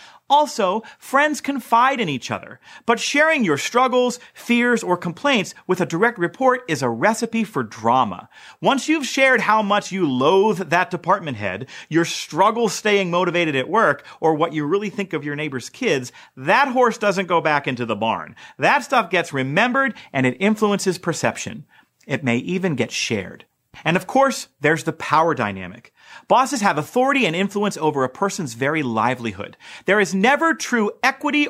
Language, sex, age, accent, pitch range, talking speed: English, male, 40-59, American, 155-245 Hz, 170 wpm